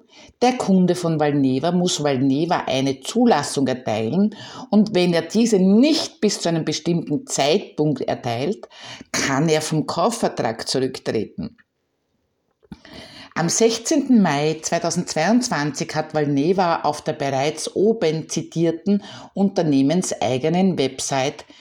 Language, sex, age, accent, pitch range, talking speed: German, female, 50-69, Austrian, 140-205 Hz, 105 wpm